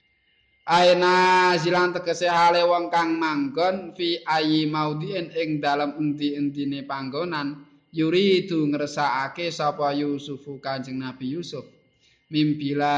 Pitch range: 140-160 Hz